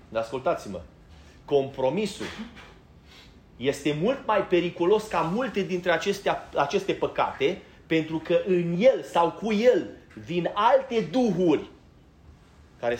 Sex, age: male, 30-49